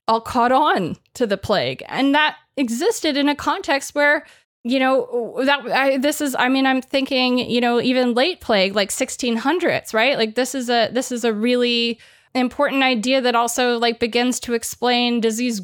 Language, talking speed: English, 180 wpm